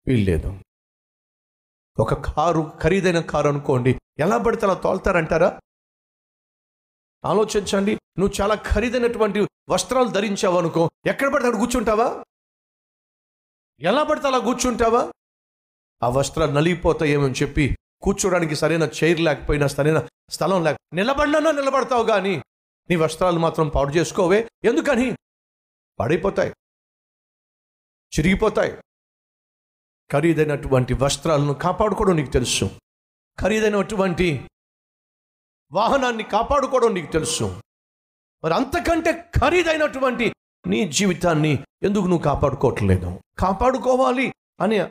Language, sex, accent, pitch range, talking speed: Telugu, male, native, 130-220 Hz, 90 wpm